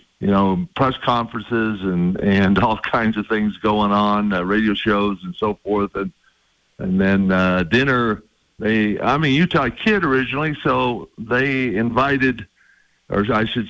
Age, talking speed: 50-69, 155 wpm